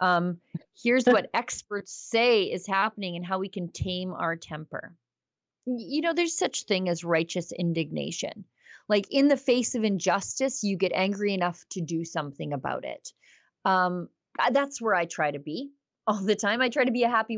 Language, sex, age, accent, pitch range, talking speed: English, female, 30-49, American, 170-230 Hz, 185 wpm